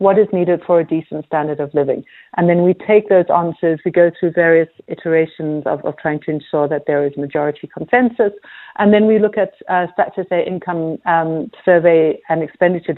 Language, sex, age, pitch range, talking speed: English, female, 60-79, 165-195 Hz, 200 wpm